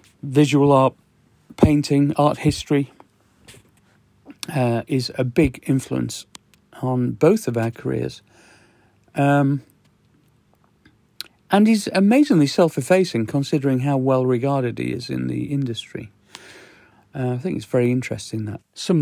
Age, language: 40-59, English